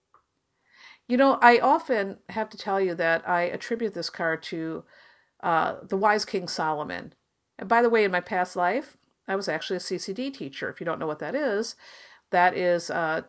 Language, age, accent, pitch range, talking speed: English, 50-69, American, 175-240 Hz, 195 wpm